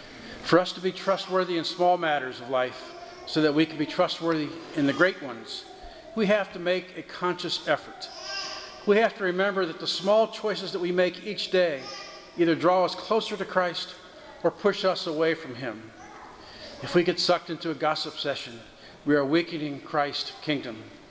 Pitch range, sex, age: 155-190 Hz, male, 50-69